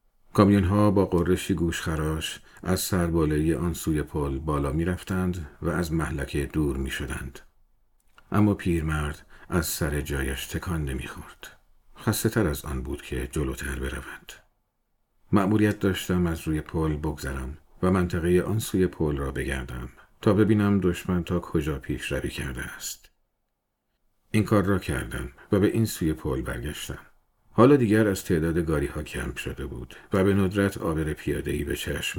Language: Persian